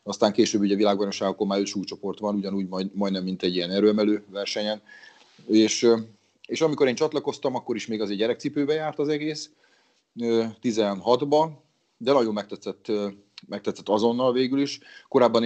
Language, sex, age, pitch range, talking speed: Hungarian, male, 30-49, 95-120 Hz, 150 wpm